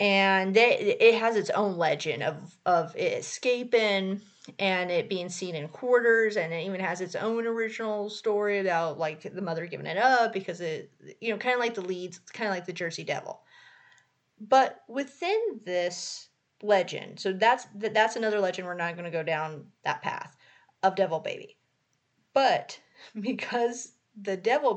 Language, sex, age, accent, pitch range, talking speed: English, female, 30-49, American, 175-230 Hz, 170 wpm